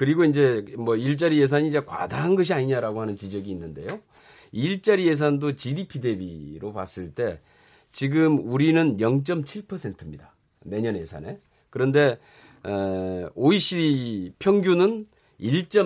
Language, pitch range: Korean, 115-170 Hz